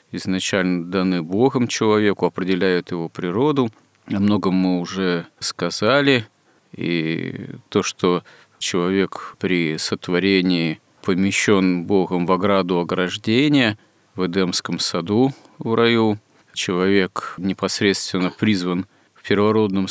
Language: Russian